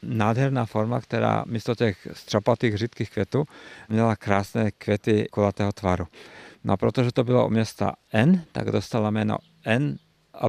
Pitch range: 105-120 Hz